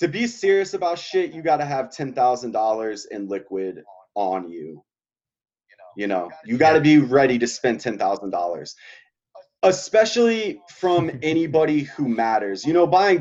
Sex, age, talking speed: male, 30-49, 155 wpm